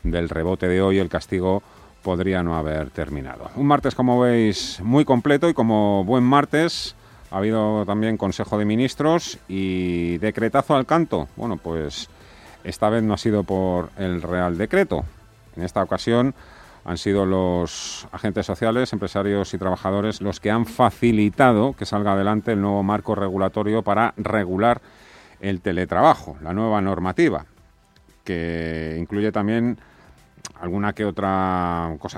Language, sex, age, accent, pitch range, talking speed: Spanish, male, 40-59, Spanish, 85-110 Hz, 145 wpm